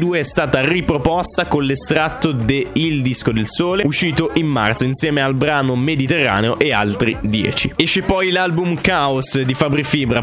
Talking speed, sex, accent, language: 160 wpm, male, native, Italian